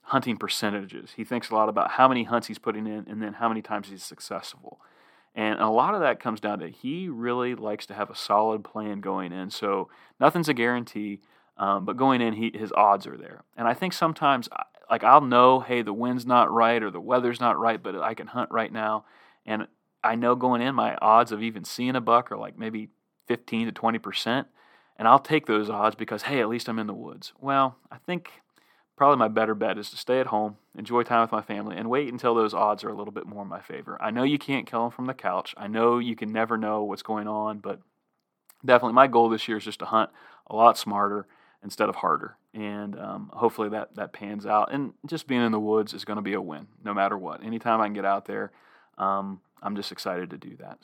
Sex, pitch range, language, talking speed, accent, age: male, 105-120 Hz, English, 250 wpm, American, 30-49